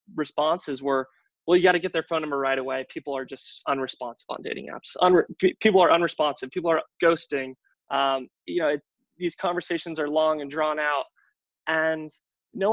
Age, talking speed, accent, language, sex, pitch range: 20-39, 175 wpm, American, English, male, 140-180 Hz